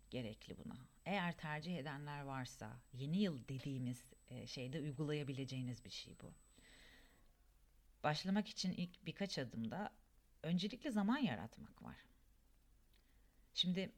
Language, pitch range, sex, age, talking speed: Turkish, 135-205 Hz, female, 40-59, 105 wpm